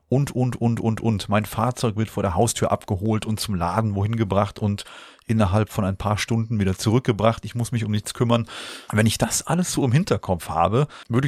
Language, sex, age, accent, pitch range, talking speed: German, male, 30-49, German, 100-130 Hz, 215 wpm